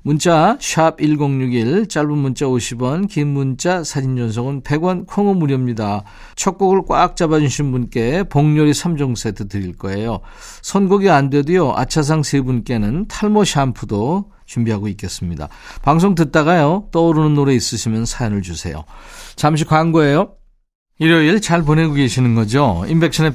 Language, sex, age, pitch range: Korean, male, 40-59, 120-170 Hz